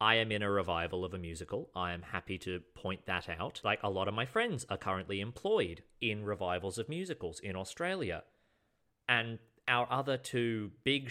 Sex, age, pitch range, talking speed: male, 30-49, 95-115 Hz, 190 wpm